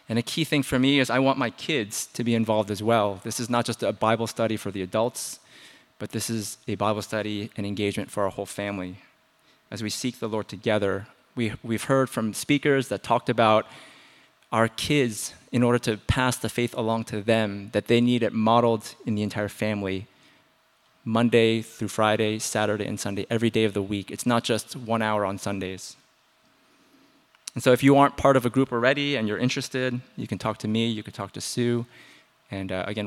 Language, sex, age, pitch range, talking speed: English, male, 20-39, 105-125 Hz, 210 wpm